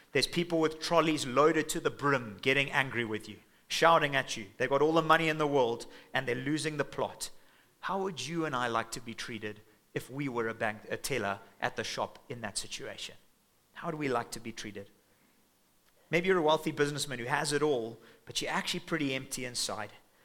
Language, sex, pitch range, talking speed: English, male, 125-150 Hz, 210 wpm